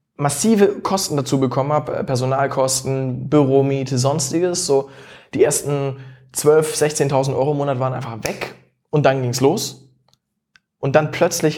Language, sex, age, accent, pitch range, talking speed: German, male, 20-39, German, 130-155 Hz, 140 wpm